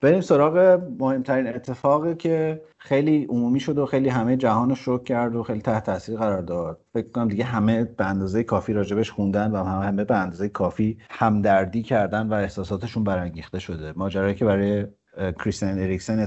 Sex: male